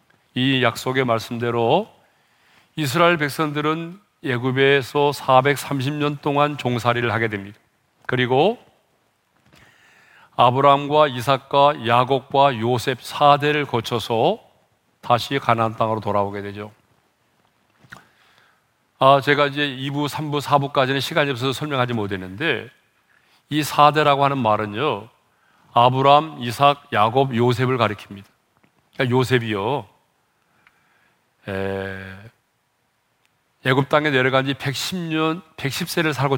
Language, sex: Korean, male